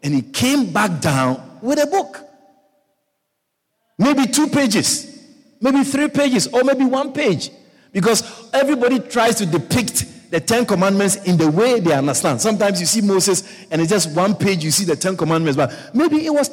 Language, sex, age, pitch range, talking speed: English, male, 50-69, 180-265 Hz, 180 wpm